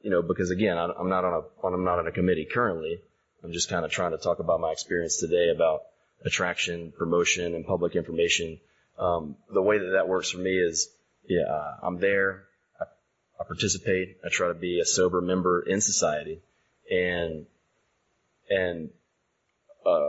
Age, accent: 30-49, American